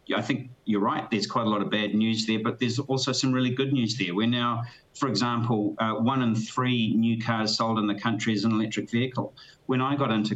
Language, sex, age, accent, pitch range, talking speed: English, male, 40-59, Australian, 105-120 Hz, 245 wpm